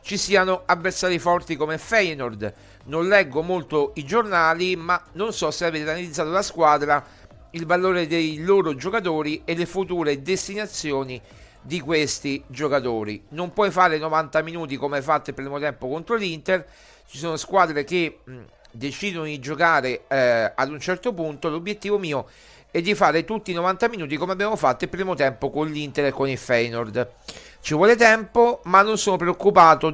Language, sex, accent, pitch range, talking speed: Italian, male, native, 140-190 Hz, 170 wpm